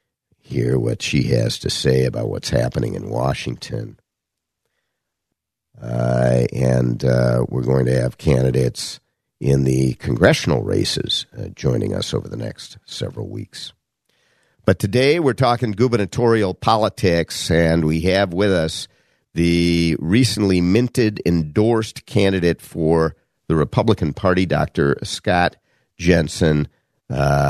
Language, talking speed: English, 120 wpm